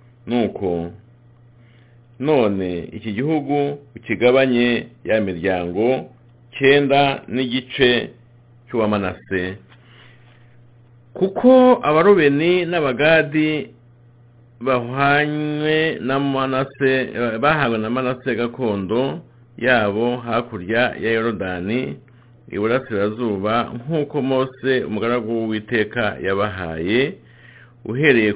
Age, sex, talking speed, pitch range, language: 50-69, male, 70 wpm, 110-130 Hz, English